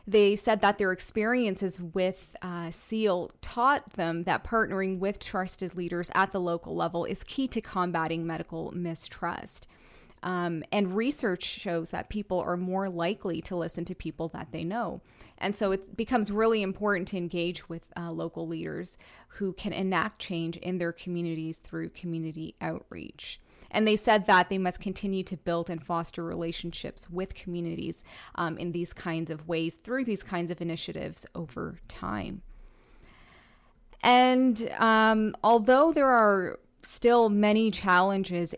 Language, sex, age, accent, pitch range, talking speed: English, female, 20-39, American, 170-215 Hz, 150 wpm